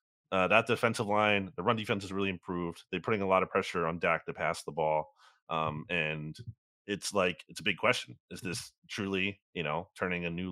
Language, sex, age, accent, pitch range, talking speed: English, male, 30-49, American, 100-130 Hz, 215 wpm